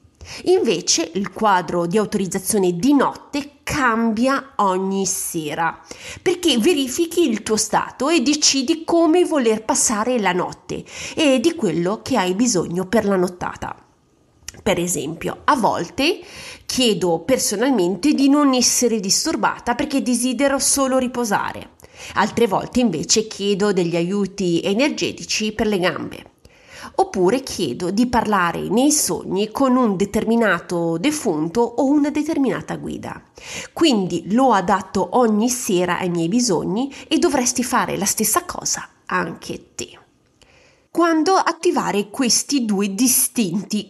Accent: native